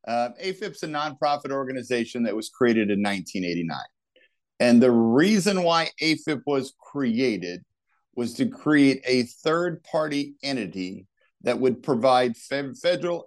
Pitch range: 115-145 Hz